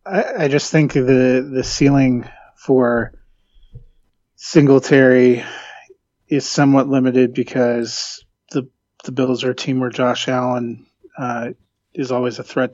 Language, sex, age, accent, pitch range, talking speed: English, male, 30-49, American, 120-135 Hz, 125 wpm